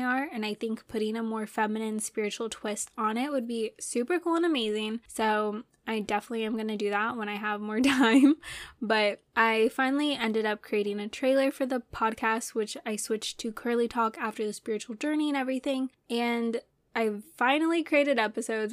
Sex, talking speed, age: female, 190 wpm, 10-29